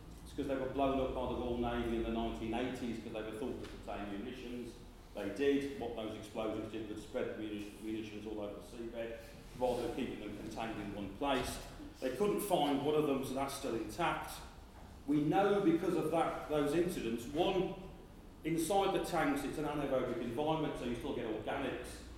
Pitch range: 110-145 Hz